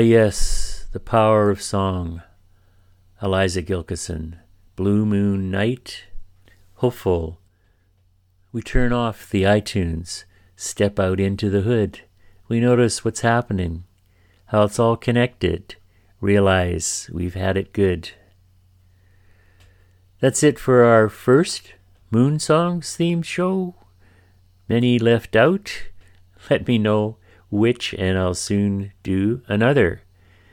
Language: English